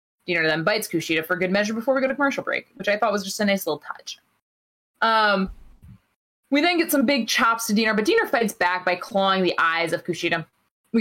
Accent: American